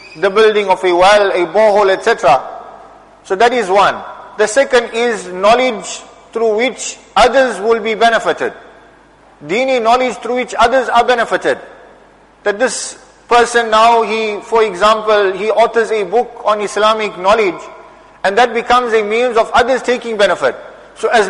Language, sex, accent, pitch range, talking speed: English, male, Indian, 210-240 Hz, 150 wpm